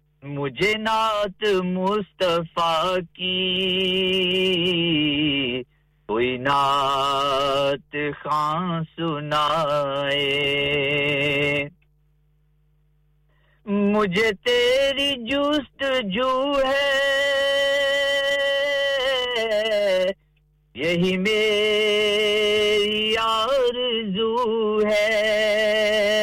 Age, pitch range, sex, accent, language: 50-69, 150-220 Hz, male, Indian, English